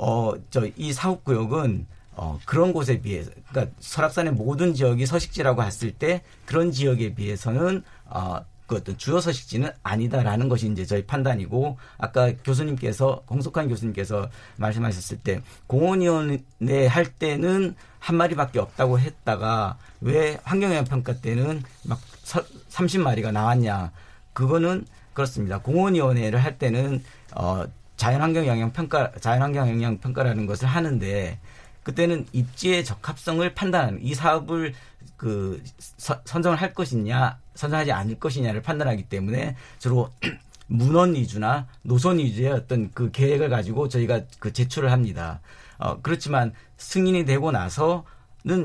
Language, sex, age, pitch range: Korean, male, 50-69, 115-155 Hz